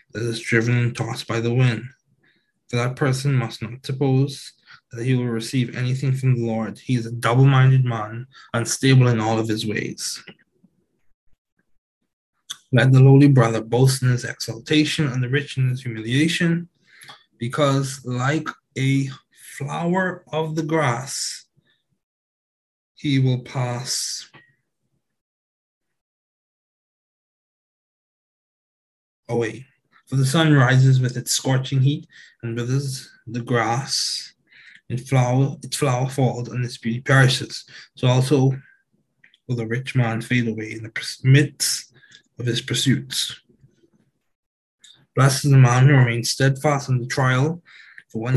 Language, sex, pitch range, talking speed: English, male, 120-135 Hz, 130 wpm